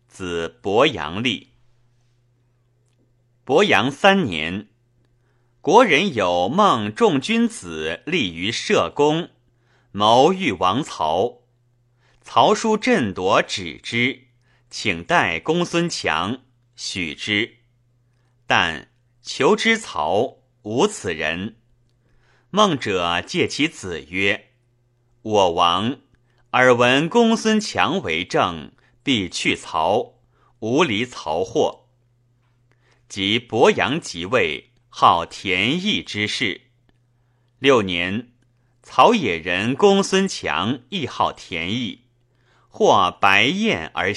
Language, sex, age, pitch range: Chinese, male, 30-49, 120-130 Hz